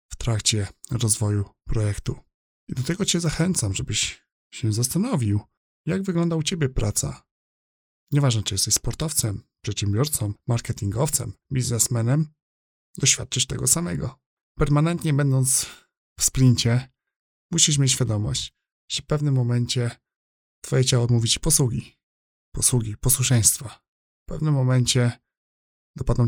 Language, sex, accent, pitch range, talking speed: Polish, male, native, 110-140 Hz, 110 wpm